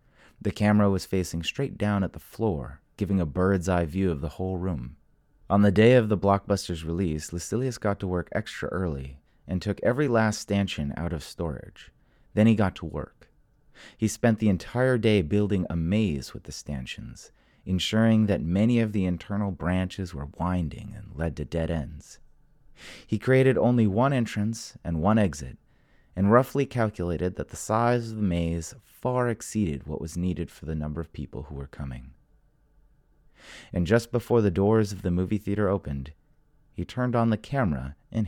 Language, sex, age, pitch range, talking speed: English, male, 30-49, 80-110 Hz, 180 wpm